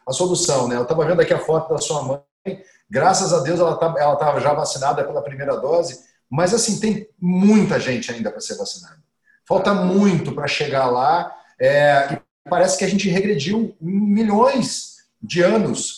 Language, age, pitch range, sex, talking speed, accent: Portuguese, 40-59, 180-235 Hz, male, 180 wpm, Brazilian